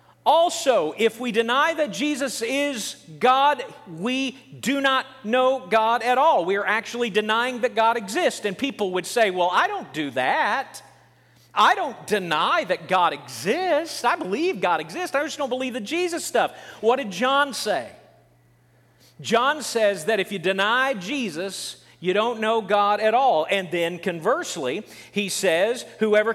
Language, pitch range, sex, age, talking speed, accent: English, 200-275 Hz, male, 40-59, 160 wpm, American